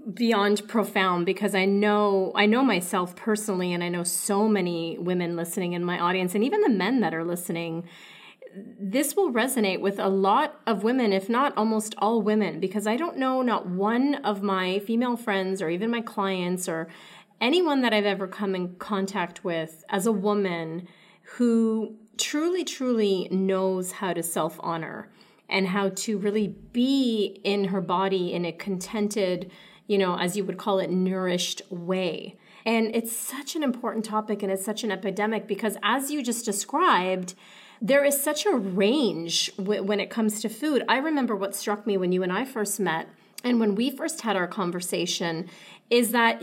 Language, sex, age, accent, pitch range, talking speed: English, female, 30-49, American, 190-230 Hz, 180 wpm